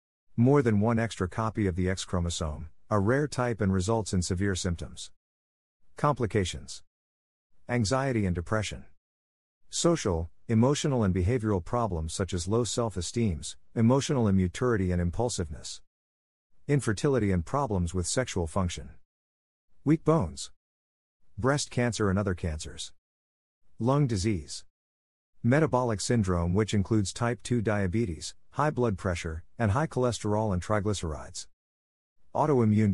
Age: 50-69